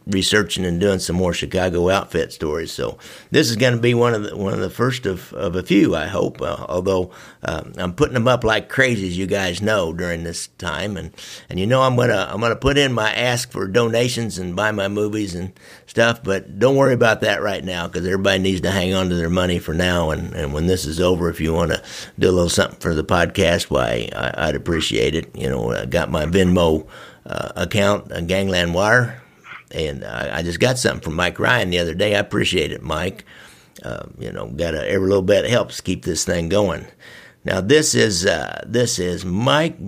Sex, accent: male, American